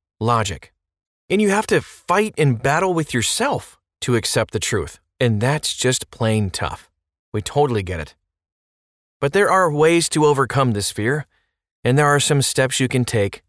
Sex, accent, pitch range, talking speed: male, American, 105-145 Hz, 175 wpm